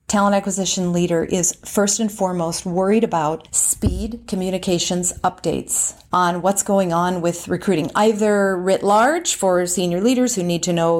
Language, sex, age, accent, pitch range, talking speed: English, female, 40-59, American, 175-220 Hz, 155 wpm